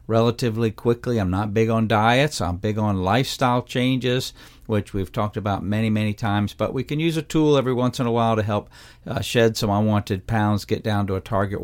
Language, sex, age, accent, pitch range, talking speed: English, male, 50-69, American, 105-135 Hz, 215 wpm